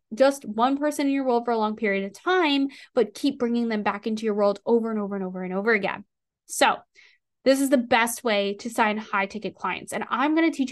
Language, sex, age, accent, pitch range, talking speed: English, female, 10-29, American, 225-275 Hz, 240 wpm